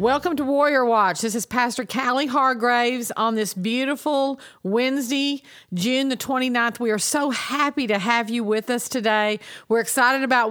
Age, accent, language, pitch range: 50-69, American, English, 210-255 Hz